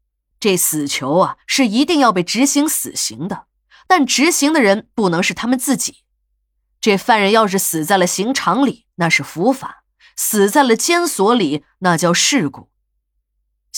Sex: female